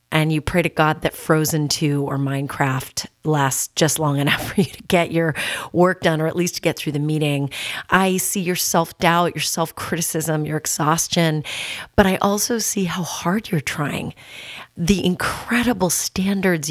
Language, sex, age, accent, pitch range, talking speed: English, female, 30-49, American, 150-190 Hz, 170 wpm